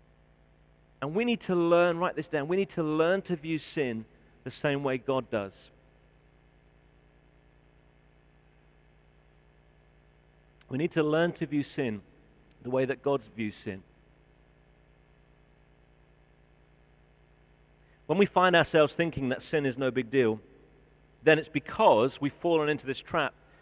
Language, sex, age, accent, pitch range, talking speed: English, male, 40-59, British, 135-160 Hz, 130 wpm